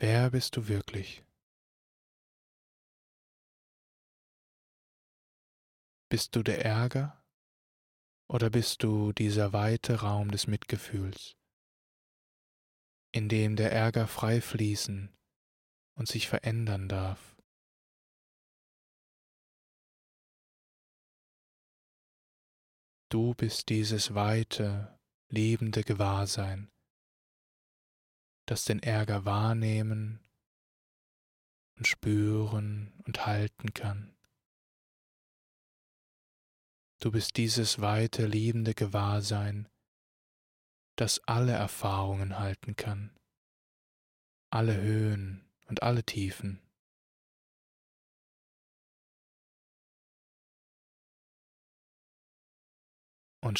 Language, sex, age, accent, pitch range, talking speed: German, male, 20-39, German, 100-110 Hz, 65 wpm